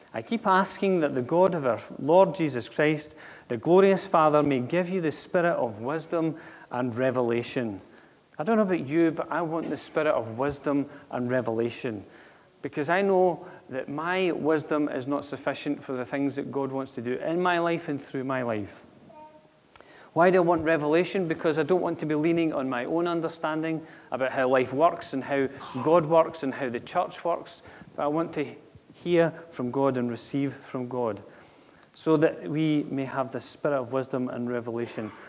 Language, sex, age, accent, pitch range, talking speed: English, male, 40-59, British, 135-165 Hz, 190 wpm